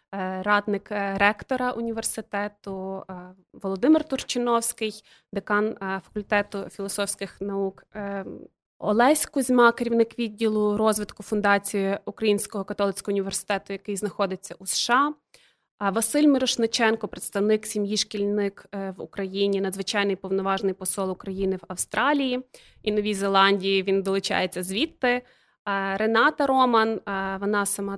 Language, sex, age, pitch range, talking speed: Ukrainian, female, 20-39, 195-230 Hz, 95 wpm